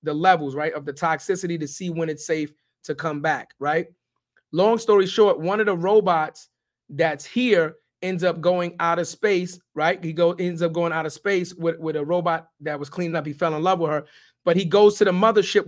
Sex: male